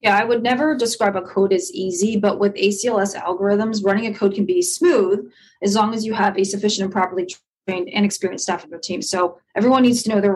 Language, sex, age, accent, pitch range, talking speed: English, female, 20-39, American, 190-220 Hz, 240 wpm